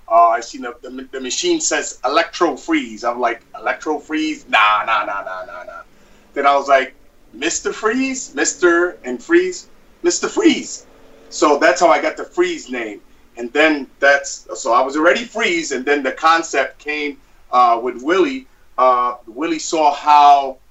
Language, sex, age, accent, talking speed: English, male, 30-49, American, 170 wpm